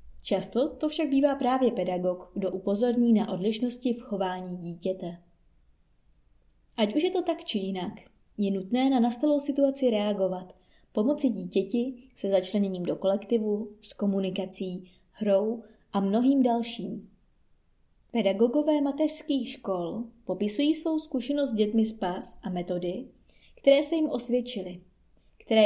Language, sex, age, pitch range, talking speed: Czech, female, 20-39, 190-250 Hz, 125 wpm